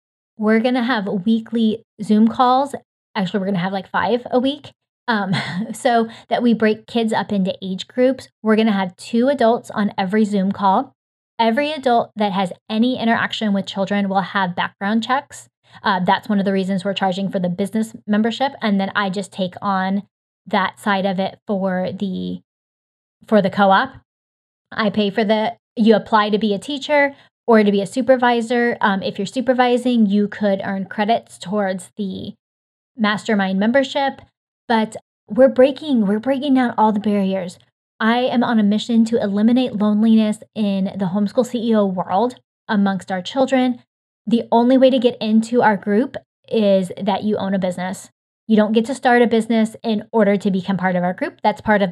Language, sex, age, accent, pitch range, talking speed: English, female, 20-39, American, 195-240 Hz, 180 wpm